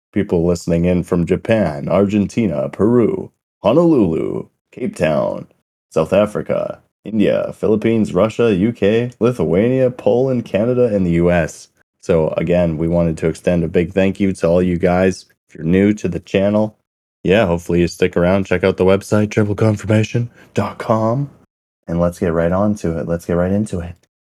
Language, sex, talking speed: English, male, 160 wpm